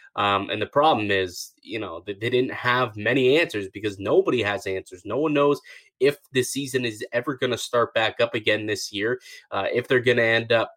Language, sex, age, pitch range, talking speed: English, male, 20-39, 110-130 Hz, 215 wpm